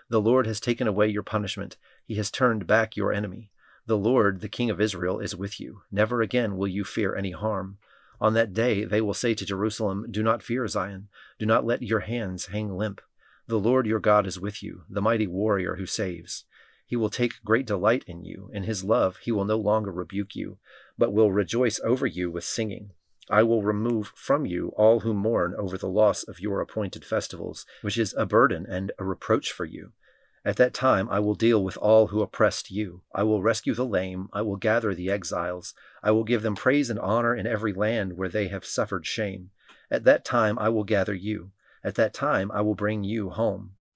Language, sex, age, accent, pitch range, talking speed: English, male, 30-49, American, 100-110 Hz, 215 wpm